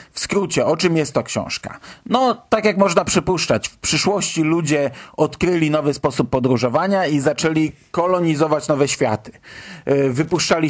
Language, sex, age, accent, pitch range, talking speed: Polish, male, 40-59, native, 130-170 Hz, 140 wpm